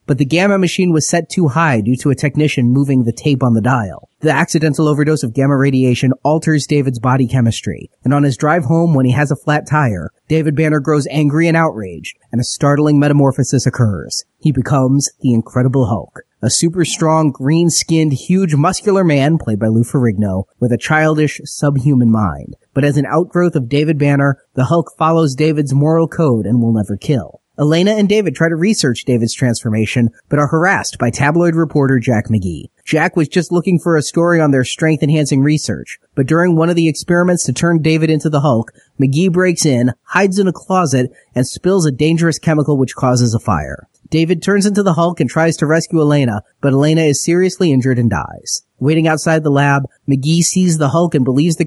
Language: English